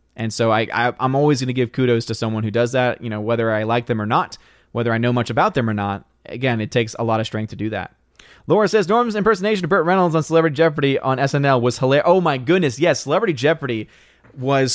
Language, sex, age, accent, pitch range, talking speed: English, male, 20-39, American, 115-160 Hz, 250 wpm